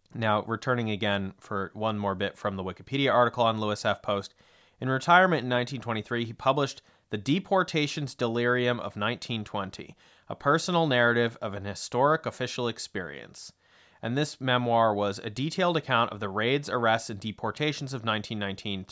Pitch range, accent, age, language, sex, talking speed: 105-135 Hz, American, 30-49, English, male, 155 wpm